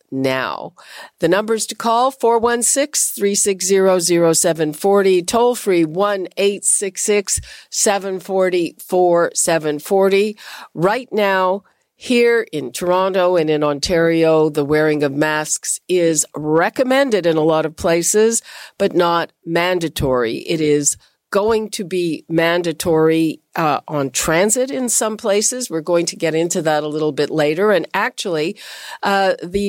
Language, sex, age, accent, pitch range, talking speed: English, female, 50-69, American, 160-200 Hz, 115 wpm